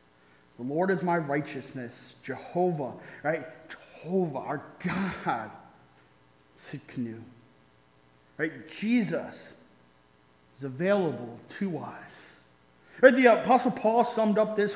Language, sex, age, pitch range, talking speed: English, male, 30-49, 150-215 Hz, 95 wpm